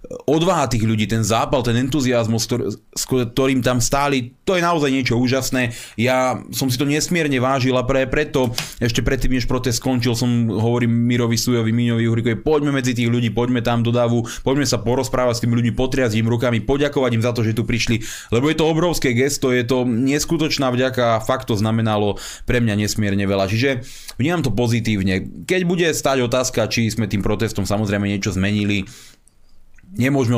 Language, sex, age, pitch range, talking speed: Slovak, male, 20-39, 110-140 Hz, 180 wpm